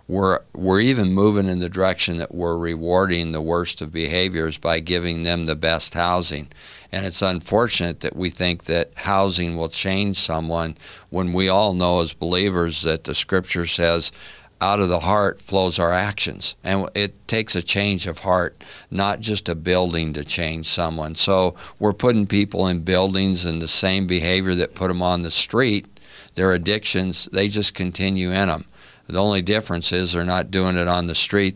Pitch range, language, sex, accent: 85-95 Hz, English, male, American